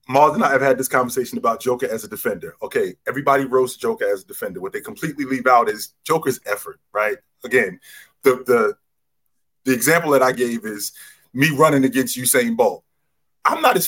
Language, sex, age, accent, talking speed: English, male, 20-39, American, 195 wpm